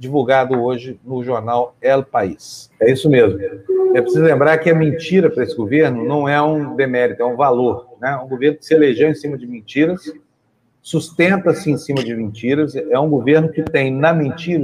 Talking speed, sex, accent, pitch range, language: 195 wpm, male, Brazilian, 135-175 Hz, Portuguese